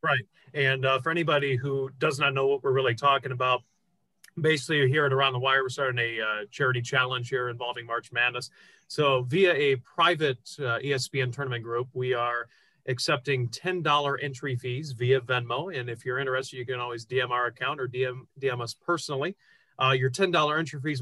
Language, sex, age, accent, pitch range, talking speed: English, male, 30-49, American, 120-140 Hz, 190 wpm